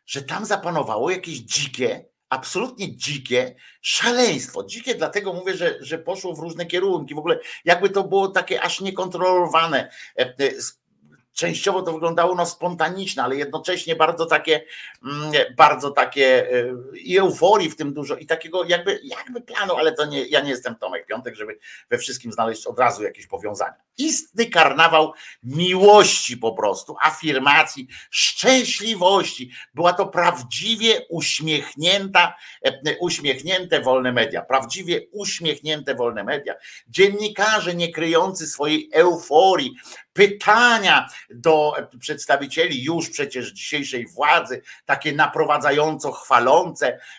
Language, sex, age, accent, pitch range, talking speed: Polish, male, 50-69, native, 150-195 Hz, 120 wpm